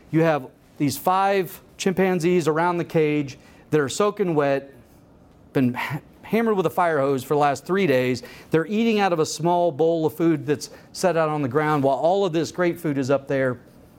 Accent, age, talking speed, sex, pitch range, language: American, 40-59, 200 wpm, male, 160-255 Hz, English